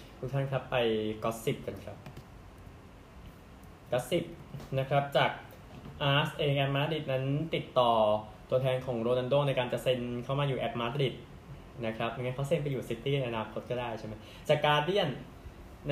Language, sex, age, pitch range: Thai, male, 20-39, 115-140 Hz